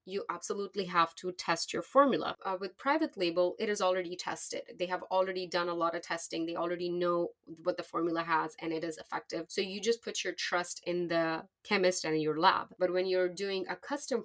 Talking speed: 225 wpm